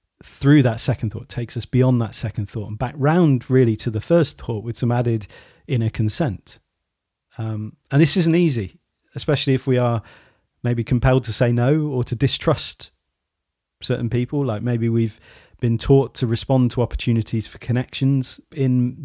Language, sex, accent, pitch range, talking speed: English, male, British, 110-130 Hz, 170 wpm